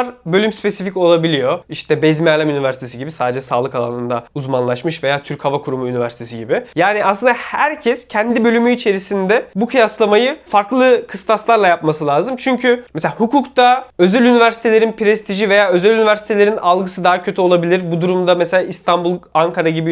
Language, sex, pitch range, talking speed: Turkish, male, 165-230 Hz, 150 wpm